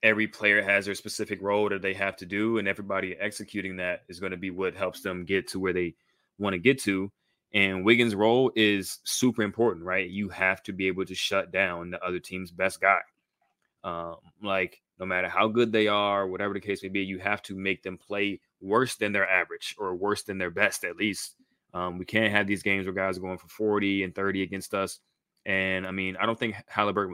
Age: 20-39